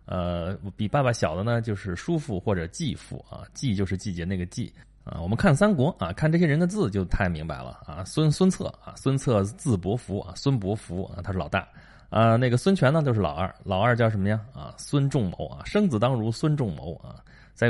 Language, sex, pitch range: Chinese, male, 95-130 Hz